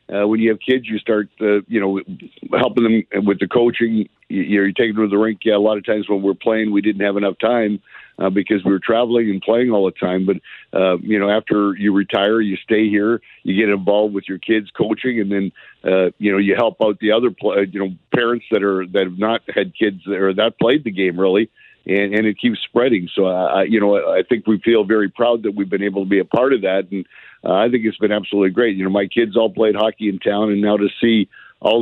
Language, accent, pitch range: English, American, 100-110 Hz